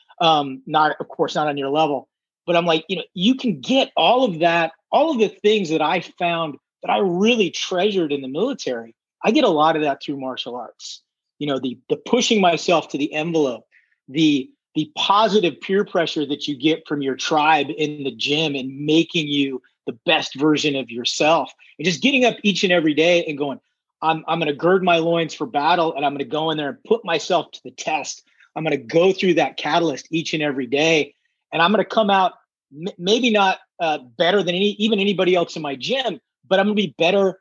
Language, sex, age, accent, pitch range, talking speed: English, male, 30-49, American, 150-185 Hz, 225 wpm